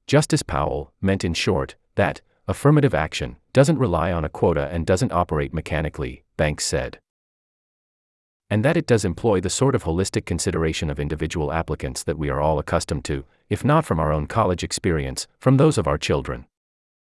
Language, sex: English, male